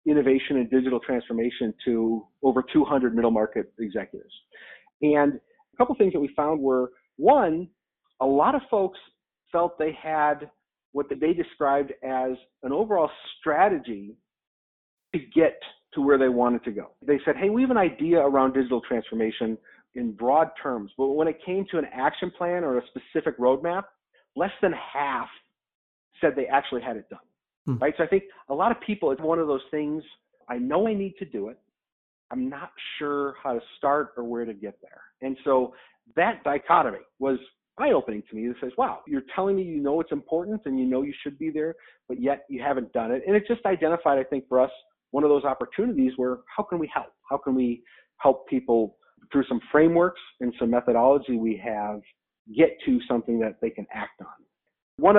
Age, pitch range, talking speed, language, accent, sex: 40-59, 125-165 Hz, 190 wpm, English, American, male